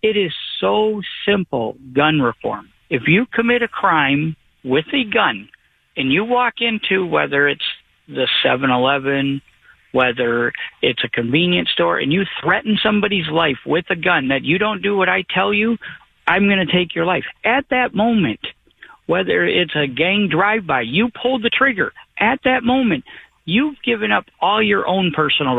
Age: 50-69